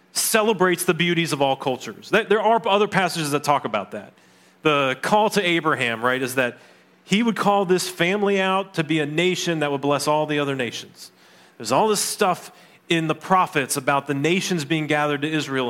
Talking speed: 200 wpm